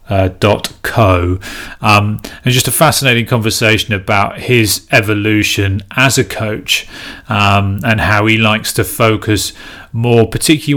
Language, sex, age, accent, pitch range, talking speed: English, male, 30-49, British, 100-115 Hz, 135 wpm